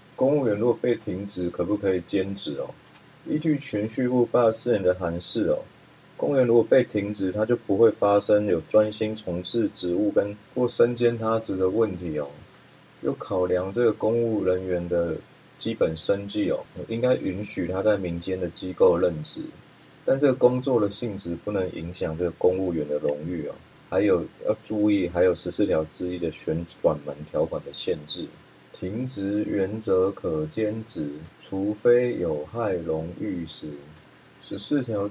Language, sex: Chinese, male